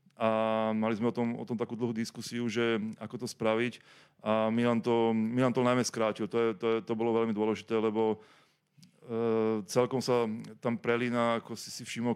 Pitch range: 110-120 Hz